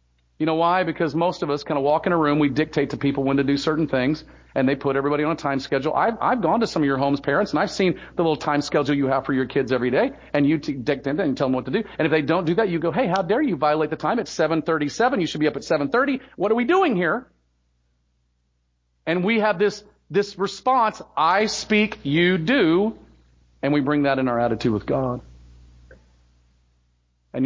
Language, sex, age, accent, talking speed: English, male, 40-59, American, 245 wpm